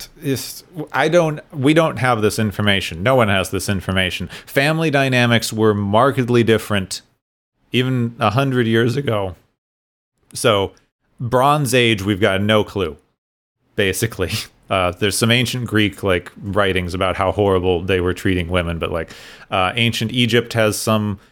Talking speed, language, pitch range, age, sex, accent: 145 wpm, English, 100-125 Hz, 30-49, male, American